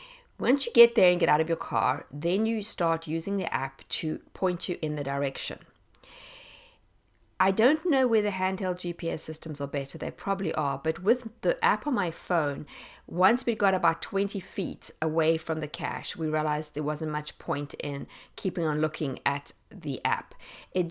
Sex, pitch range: female, 155-215 Hz